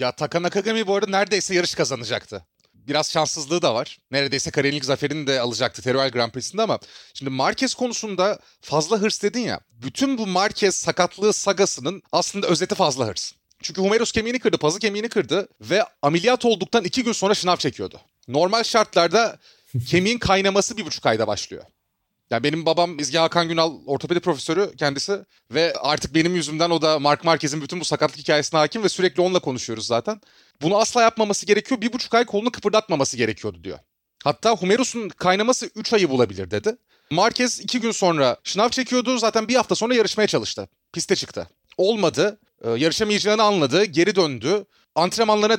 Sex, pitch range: male, 150-215 Hz